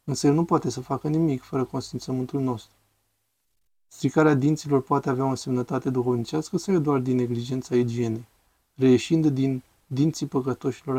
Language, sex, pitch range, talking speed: Romanian, male, 125-150 Hz, 145 wpm